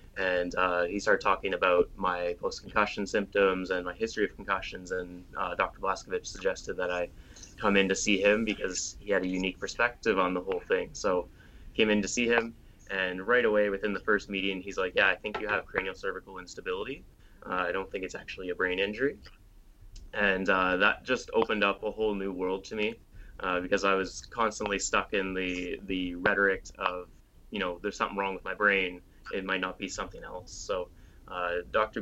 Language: English